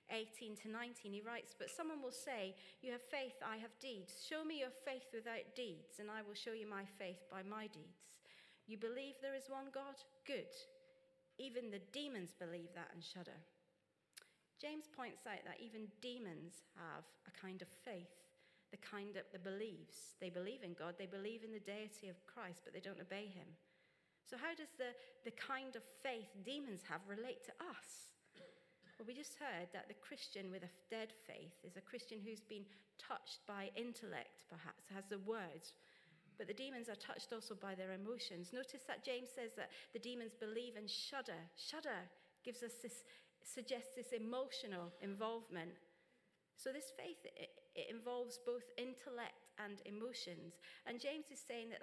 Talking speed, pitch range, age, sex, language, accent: 180 wpm, 190-260 Hz, 40-59, female, English, British